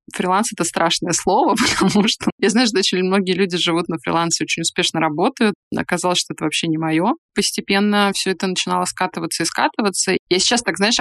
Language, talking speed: Russian, 190 wpm